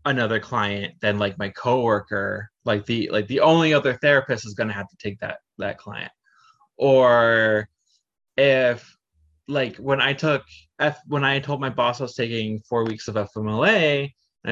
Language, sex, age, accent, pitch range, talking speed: English, male, 20-39, American, 115-145 Hz, 175 wpm